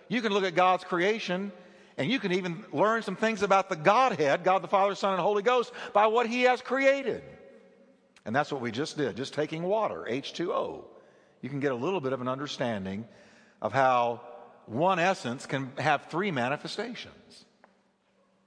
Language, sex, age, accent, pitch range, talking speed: English, male, 50-69, American, 155-220 Hz, 180 wpm